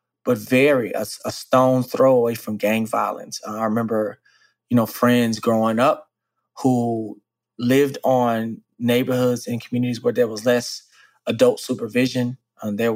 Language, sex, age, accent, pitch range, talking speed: English, male, 20-39, American, 115-130 Hz, 150 wpm